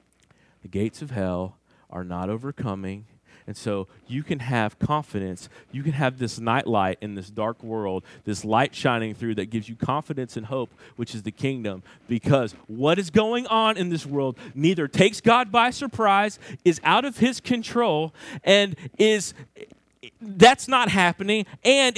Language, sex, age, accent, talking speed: English, male, 40-59, American, 165 wpm